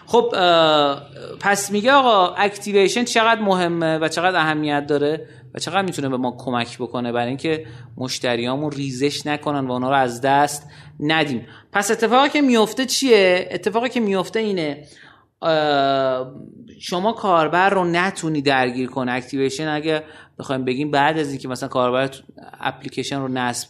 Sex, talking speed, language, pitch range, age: male, 140 wpm, Persian, 125-165 Hz, 30-49